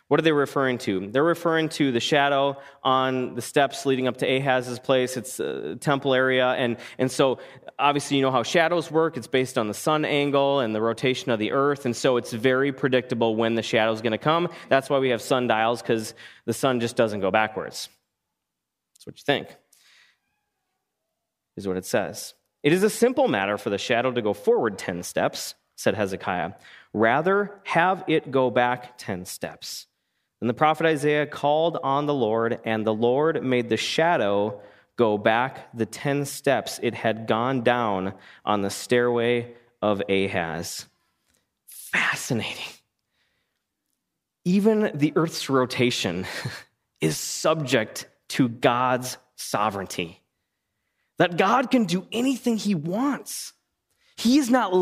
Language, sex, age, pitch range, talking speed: English, male, 30-49, 115-155 Hz, 160 wpm